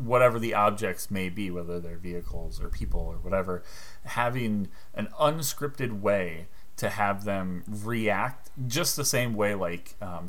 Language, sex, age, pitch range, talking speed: English, male, 30-49, 85-105 Hz, 150 wpm